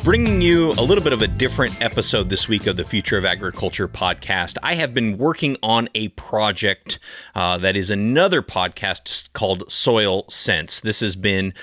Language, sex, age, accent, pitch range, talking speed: English, male, 30-49, American, 95-125 Hz, 180 wpm